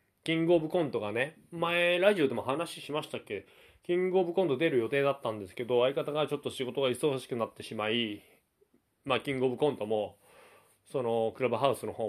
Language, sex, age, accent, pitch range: Japanese, male, 20-39, native, 115-165 Hz